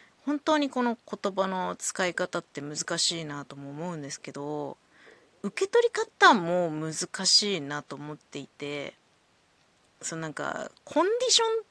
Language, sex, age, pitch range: Japanese, female, 20-39, 165-245 Hz